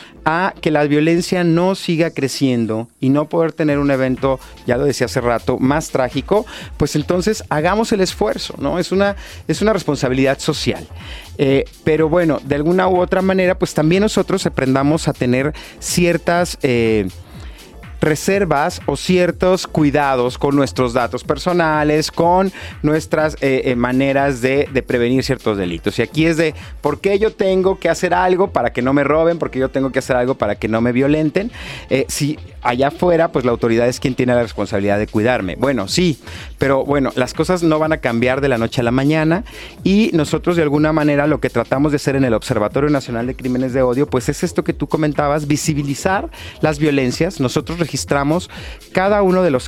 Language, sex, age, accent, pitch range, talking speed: Spanish, male, 30-49, Mexican, 130-175 Hz, 190 wpm